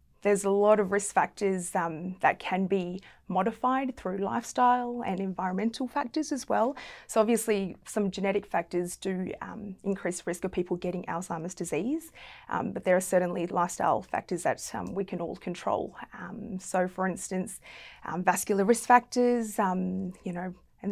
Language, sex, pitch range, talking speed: English, female, 180-205 Hz, 160 wpm